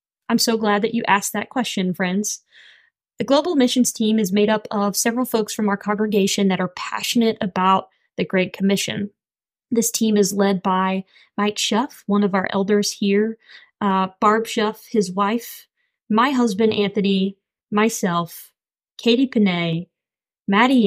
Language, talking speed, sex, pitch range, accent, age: English, 150 wpm, female, 195-225 Hz, American, 20-39